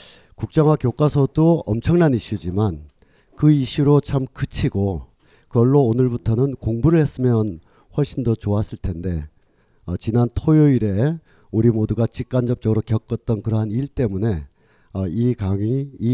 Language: Korean